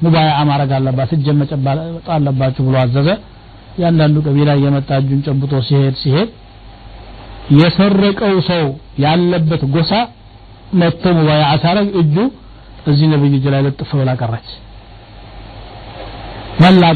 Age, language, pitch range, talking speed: 60-79, Amharic, 115-155 Hz, 105 wpm